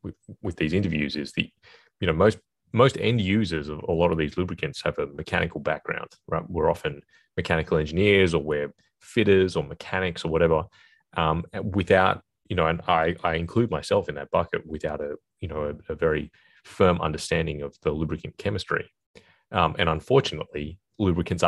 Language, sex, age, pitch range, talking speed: English, male, 30-49, 80-95 Hz, 175 wpm